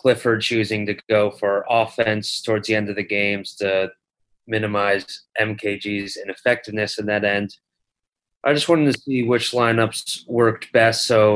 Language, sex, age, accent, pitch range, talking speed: English, male, 30-49, American, 100-115 Hz, 155 wpm